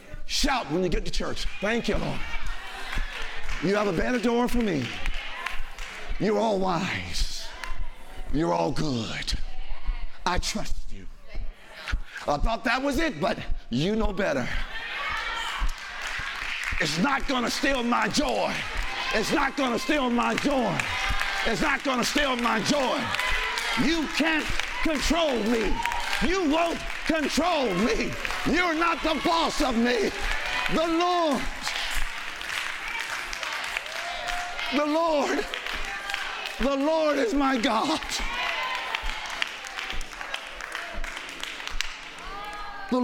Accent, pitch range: American, 230-310 Hz